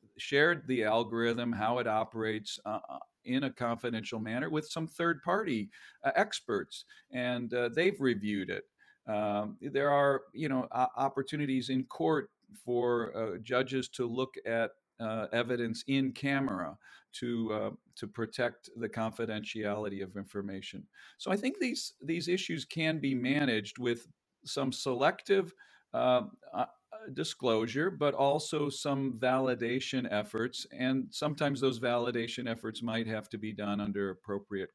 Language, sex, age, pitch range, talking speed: English, male, 50-69, 115-150 Hz, 140 wpm